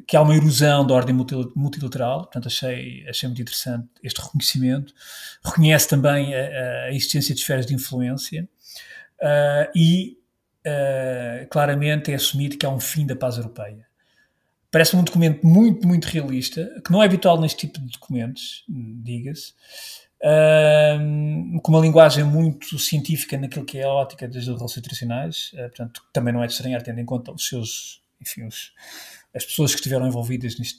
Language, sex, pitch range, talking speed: Portuguese, male, 130-165 Hz, 165 wpm